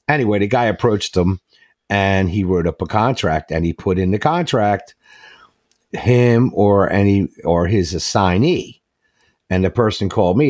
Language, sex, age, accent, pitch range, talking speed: English, male, 50-69, American, 95-125 Hz, 160 wpm